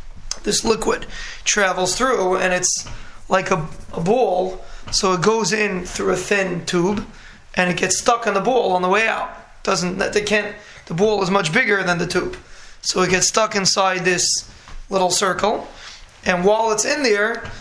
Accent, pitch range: American, 180-205 Hz